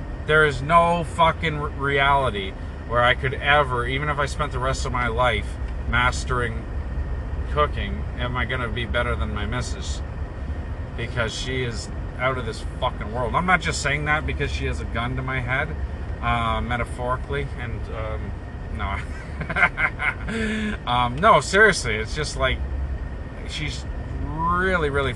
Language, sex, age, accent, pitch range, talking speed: English, male, 30-49, American, 75-120 Hz, 150 wpm